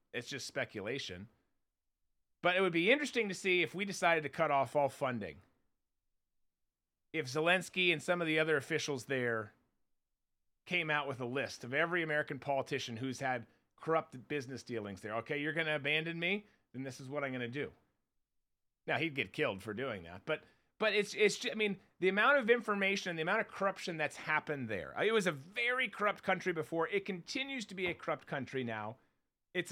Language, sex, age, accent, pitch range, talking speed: English, male, 30-49, American, 140-200 Hz, 200 wpm